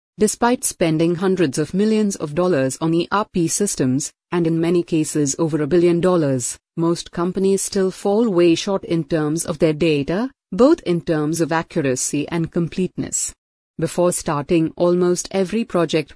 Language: English